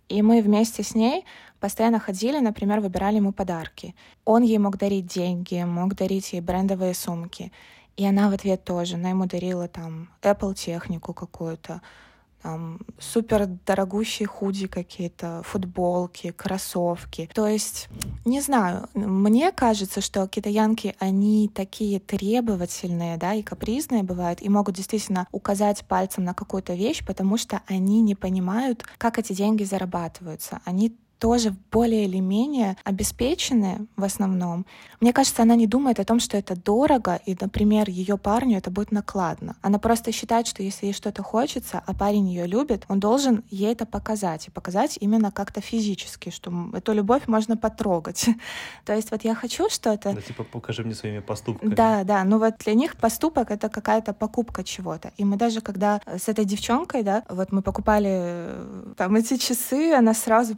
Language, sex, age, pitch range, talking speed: Russian, female, 20-39, 185-225 Hz, 160 wpm